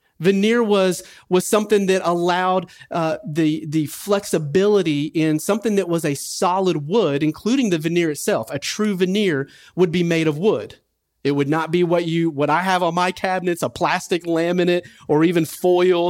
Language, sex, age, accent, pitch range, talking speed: English, male, 40-59, American, 150-190 Hz, 170 wpm